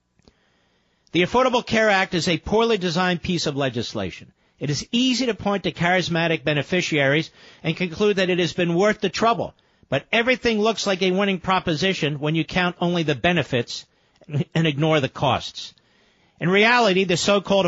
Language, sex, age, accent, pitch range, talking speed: English, male, 50-69, American, 160-215 Hz, 165 wpm